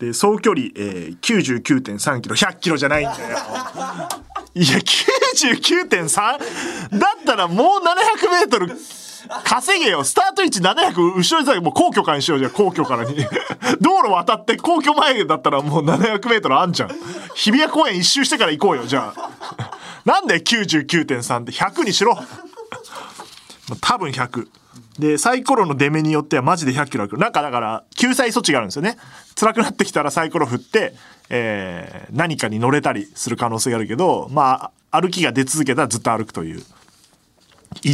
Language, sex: Japanese, male